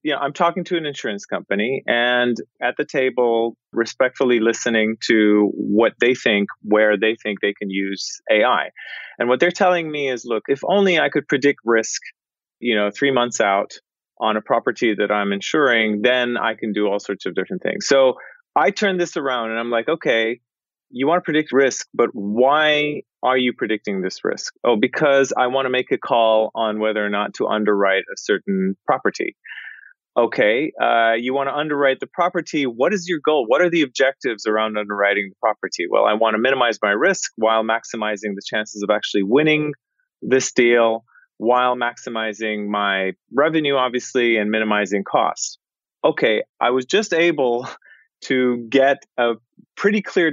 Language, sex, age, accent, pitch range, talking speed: English, male, 30-49, American, 110-140 Hz, 180 wpm